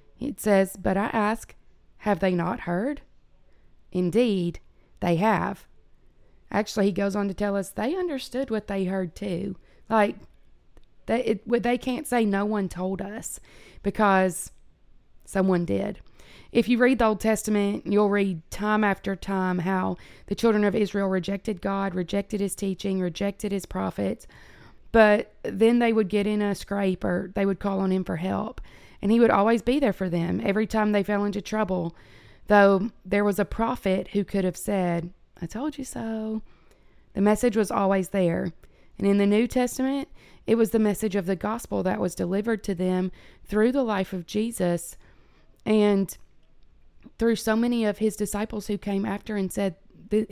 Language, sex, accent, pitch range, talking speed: English, female, American, 190-220 Hz, 175 wpm